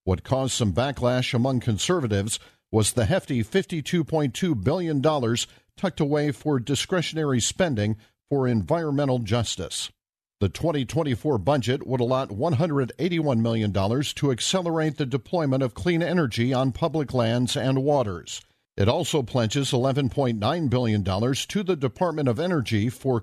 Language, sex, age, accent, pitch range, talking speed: English, male, 50-69, American, 115-155 Hz, 125 wpm